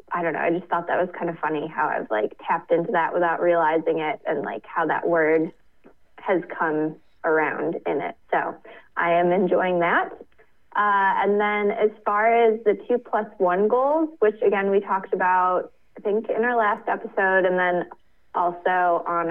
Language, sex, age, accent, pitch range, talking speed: English, female, 20-39, American, 180-220 Hz, 190 wpm